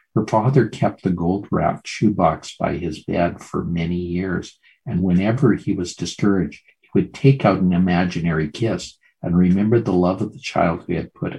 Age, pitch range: 50-69, 90-115 Hz